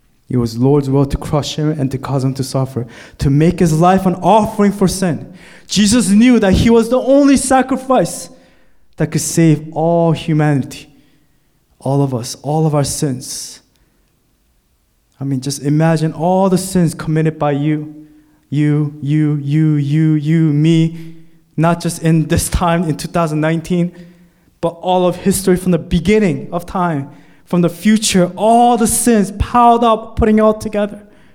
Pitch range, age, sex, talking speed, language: 145-210 Hz, 20-39, male, 165 wpm, English